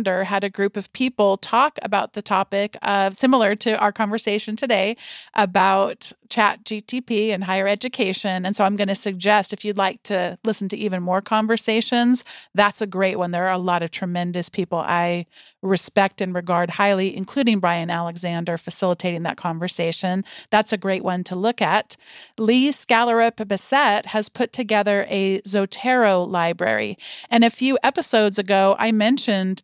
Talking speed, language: 160 wpm, English